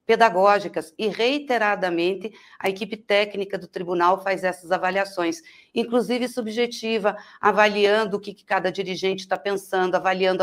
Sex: female